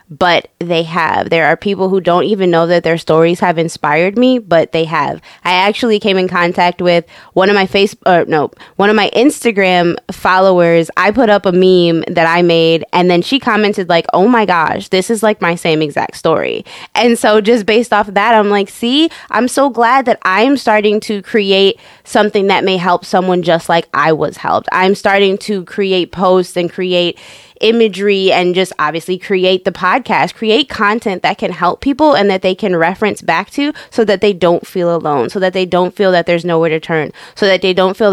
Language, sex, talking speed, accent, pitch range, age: English, female, 210 wpm, American, 175-210 Hz, 20-39